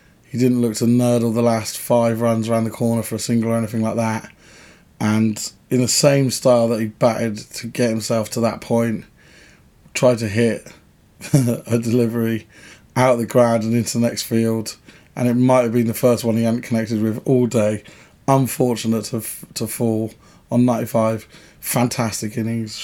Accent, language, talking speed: British, English, 180 wpm